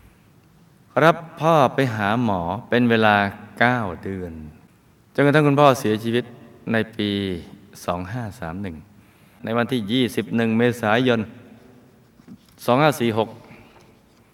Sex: male